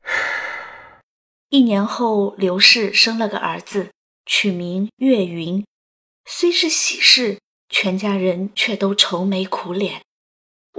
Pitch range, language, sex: 195-235 Hz, Chinese, female